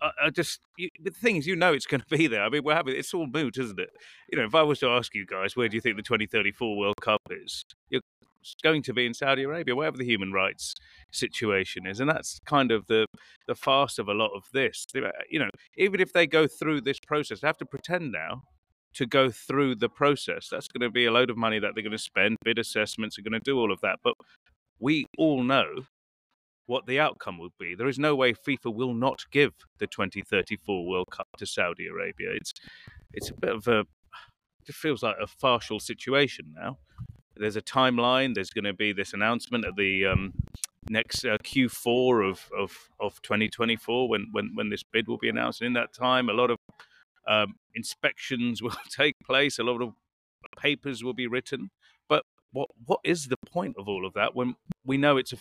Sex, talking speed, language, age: male, 220 wpm, English, 30-49